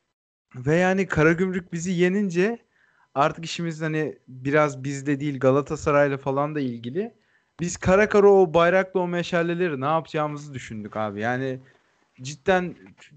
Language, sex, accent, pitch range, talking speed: Turkish, male, native, 130-160 Hz, 130 wpm